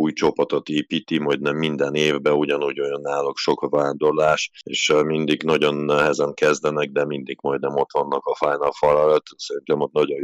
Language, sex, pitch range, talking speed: Hungarian, male, 75-85 Hz, 165 wpm